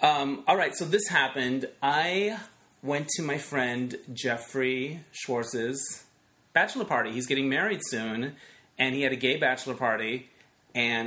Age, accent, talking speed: 30-49, American, 145 wpm